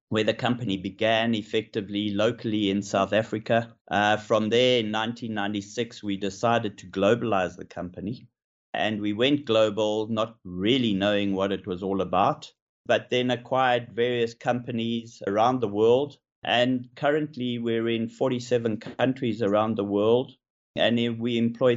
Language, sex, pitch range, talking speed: English, male, 105-120 Hz, 145 wpm